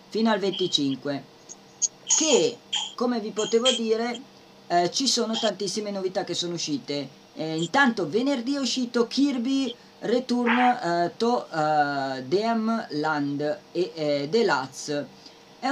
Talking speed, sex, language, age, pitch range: 125 wpm, female, Italian, 30-49, 155-225 Hz